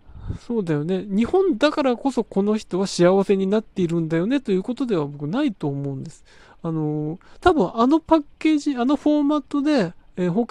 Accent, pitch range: native, 160-240 Hz